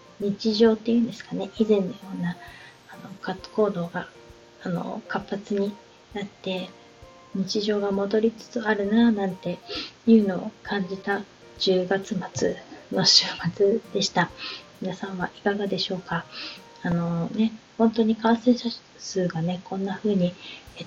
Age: 20-39